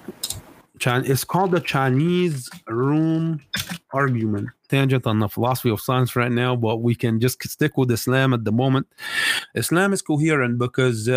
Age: 30-49